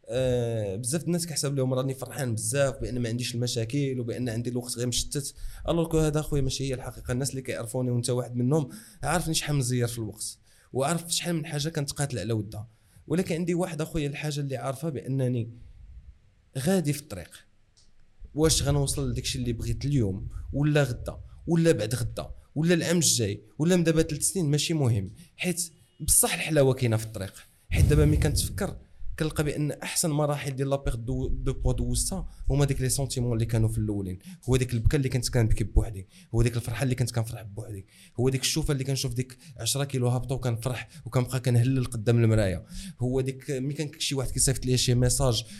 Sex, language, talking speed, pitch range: male, Arabic, 190 wpm, 115-145 Hz